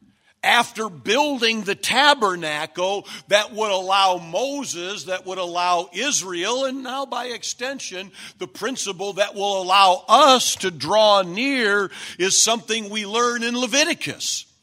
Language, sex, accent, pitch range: English, male, American, 185-255 Hz